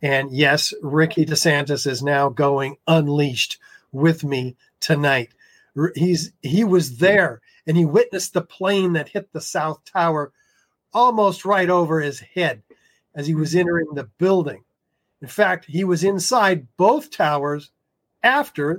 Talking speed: 140 wpm